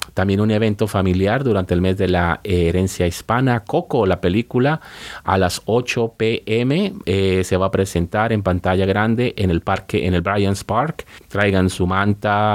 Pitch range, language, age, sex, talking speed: 90-105 Hz, English, 30-49, male, 170 wpm